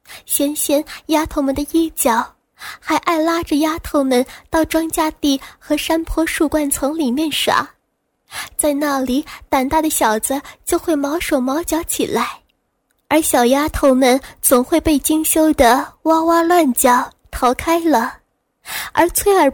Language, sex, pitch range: Chinese, female, 265-320 Hz